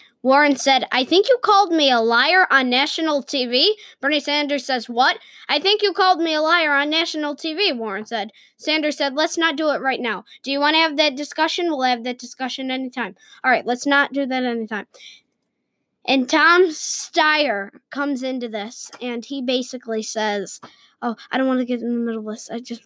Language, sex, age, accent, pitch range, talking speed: English, female, 10-29, American, 235-305 Hz, 205 wpm